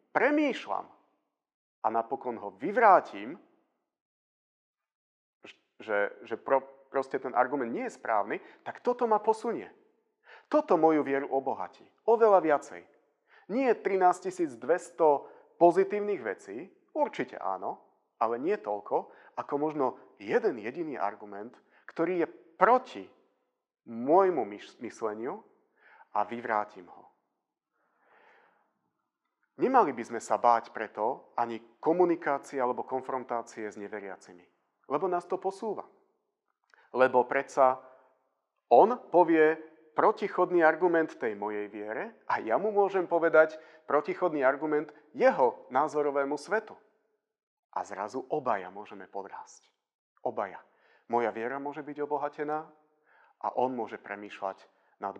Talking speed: 110 wpm